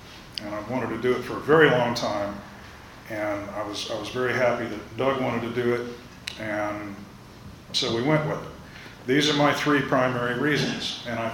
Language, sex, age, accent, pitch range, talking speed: English, male, 40-59, American, 110-140 Hz, 200 wpm